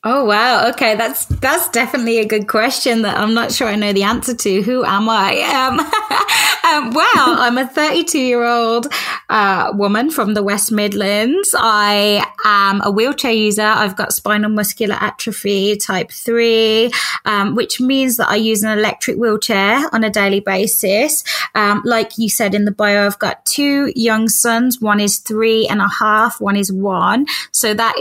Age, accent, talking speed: 20-39, British, 175 wpm